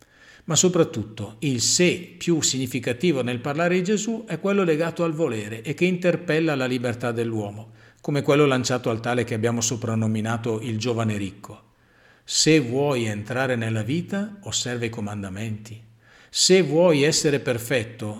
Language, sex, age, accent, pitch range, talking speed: Italian, male, 50-69, native, 110-150 Hz, 145 wpm